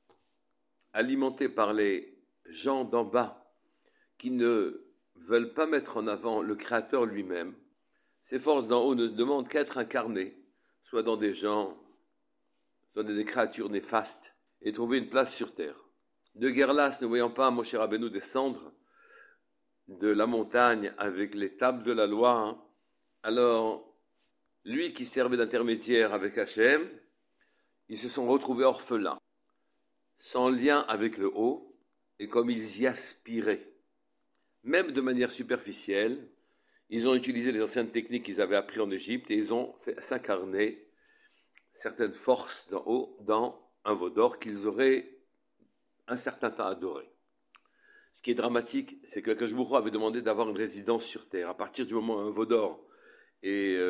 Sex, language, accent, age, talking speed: male, French, French, 60-79, 150 wpm